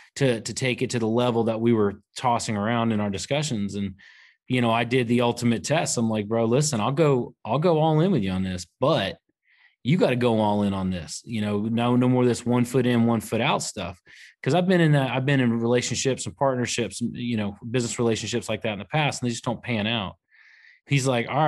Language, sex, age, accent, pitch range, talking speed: English, male, 30-49, American, 110-125 Hz, 250 wpm